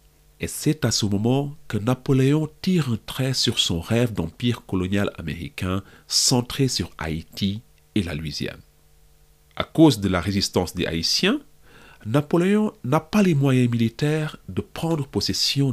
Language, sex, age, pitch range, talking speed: English, male, 50-69, 85-135 Hz, 145 wpm